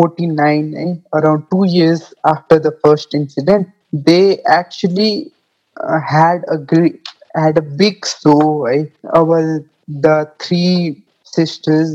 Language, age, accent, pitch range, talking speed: English, 20-39, Indian, 155-195 Hz, 120 wpm